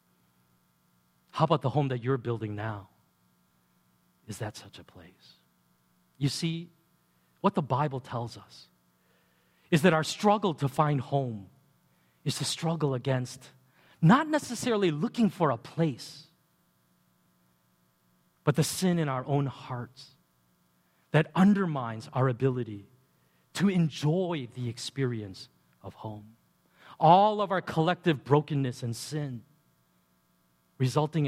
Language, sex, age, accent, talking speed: English, male, 40-59, American, 120 wpm